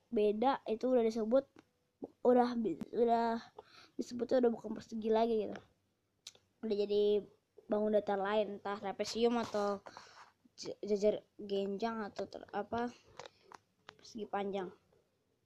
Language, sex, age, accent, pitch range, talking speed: Indonesian, female, 20-39, native, 205-245 Hz, 105 wpm